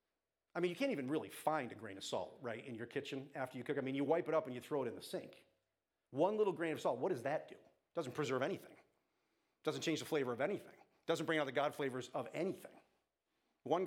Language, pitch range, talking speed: English, 125-160 Hz, 265 wpm